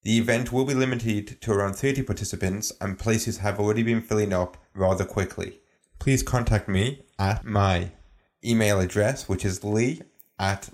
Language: English